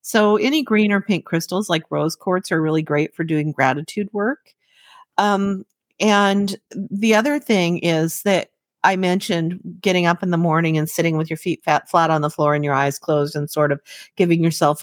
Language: English